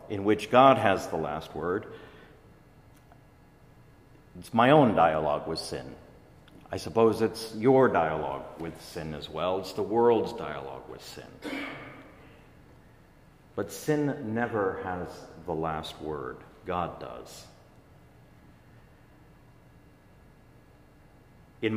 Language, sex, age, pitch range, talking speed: English, male, 50-69, 85-115 Hz, 105 wpm